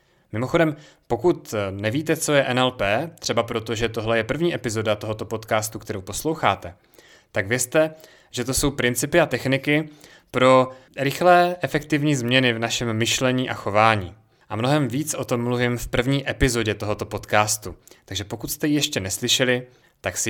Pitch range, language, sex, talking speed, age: 110-140 Hz, Czech, male, 155 wpm, 30-49